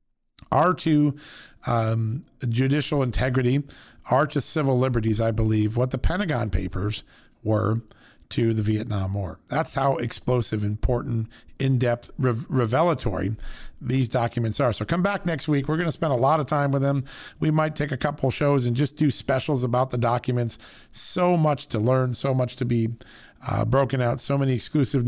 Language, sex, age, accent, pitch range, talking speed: English, male, 50-69, American, 115-140 Hz, 170 wpm